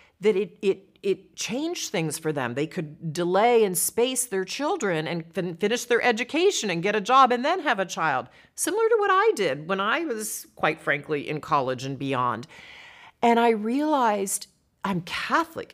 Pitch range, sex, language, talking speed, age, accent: 160-225 Hz, female, English, 185 wpm, 40-59, American